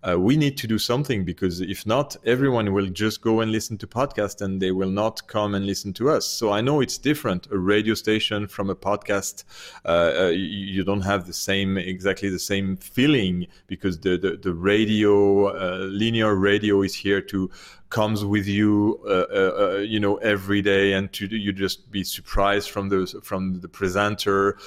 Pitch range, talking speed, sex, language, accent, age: 100-120 Hz, 190 wpm, male, German, French, 30-49